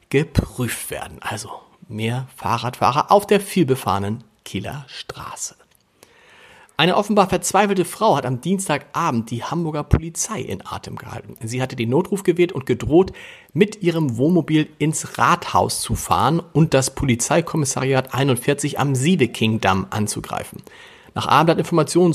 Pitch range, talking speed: 125-165 Hz, 125 wpm